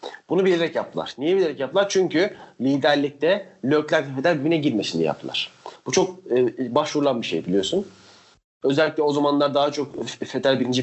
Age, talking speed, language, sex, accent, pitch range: 40-59, 145 wpm, Turkish, male, native, 130-175 Hz